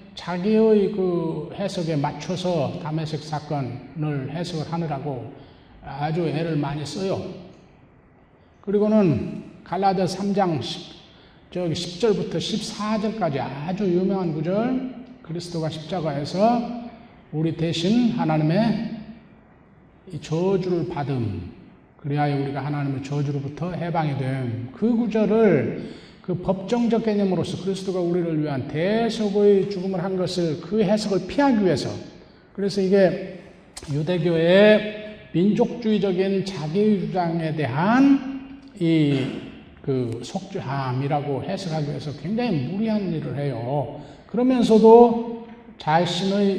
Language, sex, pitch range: Korean, male, 145-200 Hz